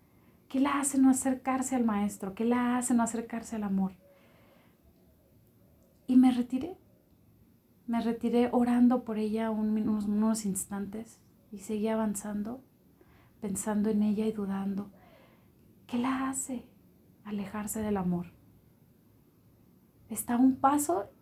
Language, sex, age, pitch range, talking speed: Spanish, female, 30-49, 185-240 Hz, 125 wpm